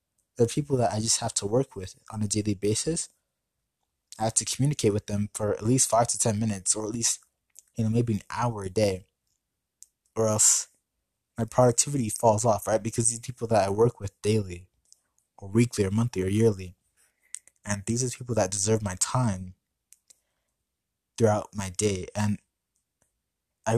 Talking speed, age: 180 wpm, 20-39